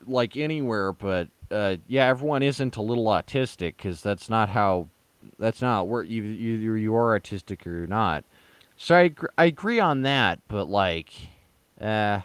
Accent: American